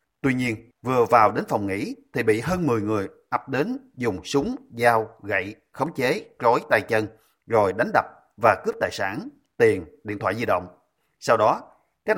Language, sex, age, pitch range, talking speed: Vietnamese, male, 30-49, 110-150 Hz, 185 wpm